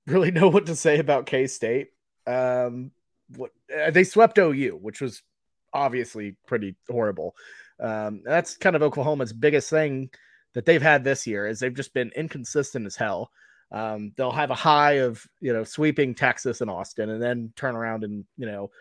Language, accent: English, American